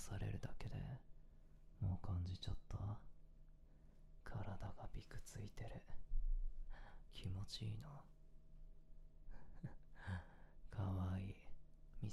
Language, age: Japanese, 20-39